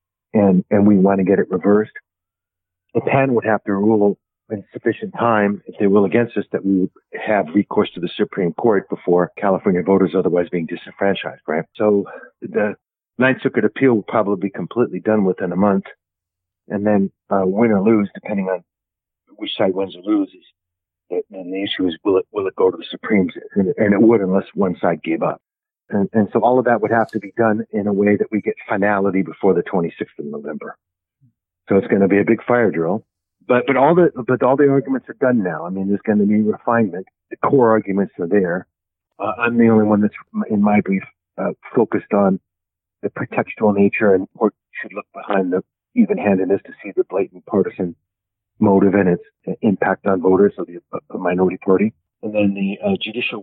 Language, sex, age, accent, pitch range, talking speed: English, male, 50-69, American, 95-115 Hz, 205 wpm